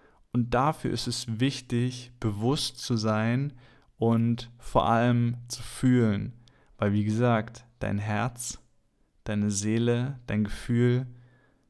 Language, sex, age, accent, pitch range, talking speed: German, male, 20-39, German, 110-120 Hz, 115 wpm